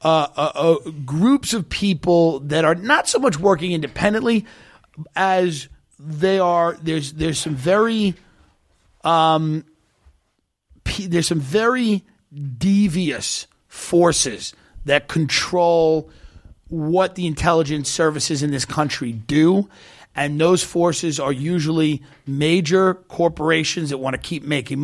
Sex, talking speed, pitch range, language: male, 120 wpm, 150-180 Hz, English